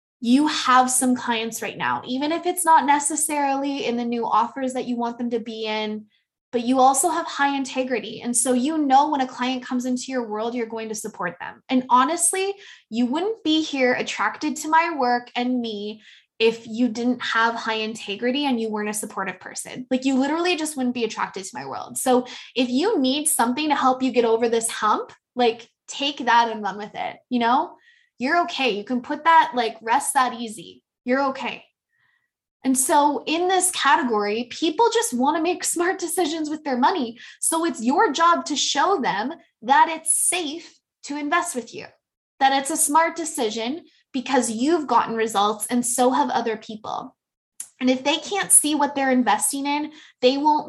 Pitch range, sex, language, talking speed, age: 235-310 Hz, female, English, 195 wpm, 20-39